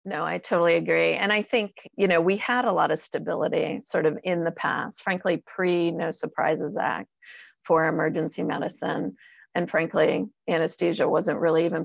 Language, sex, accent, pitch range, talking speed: English, female, American, 165-210 Hz, 170 wpm